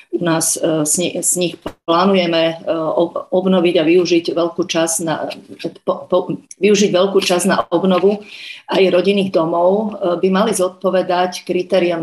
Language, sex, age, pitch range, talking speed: Slovak, female, 40-59, 175-195 Hz, 130 wpm